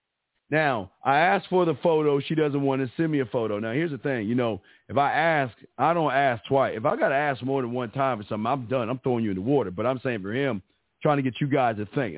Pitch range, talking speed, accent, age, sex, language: 115-140 Hz, 285 wpm, American, 40-59, male, English